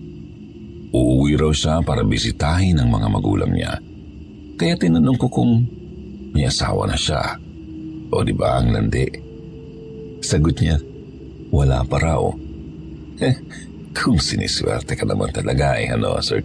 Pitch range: 70-110 Hz